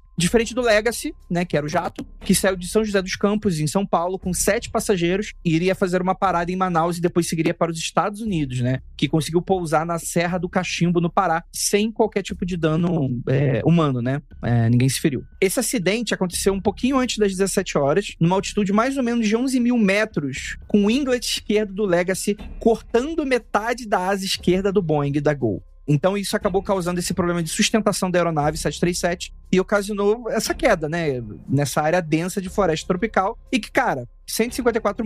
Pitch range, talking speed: 160-215 Hz, 200 wpm